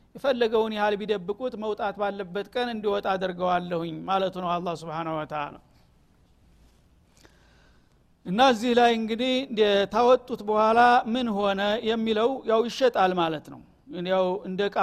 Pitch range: 190-235 Hz